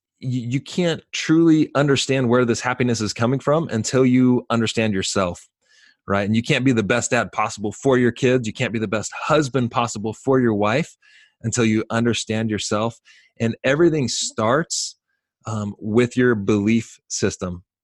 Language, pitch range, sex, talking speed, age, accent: English, 110-140 Hz, male, 160 wpm, 20-39, American